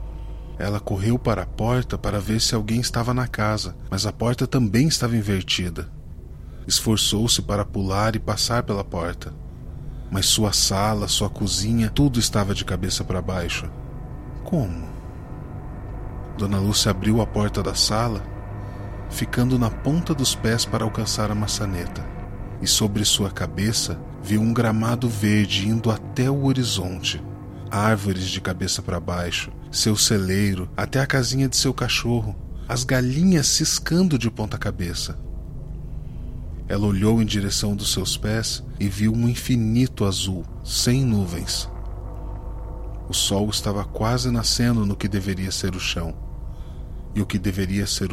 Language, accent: Portuguese, Brazilian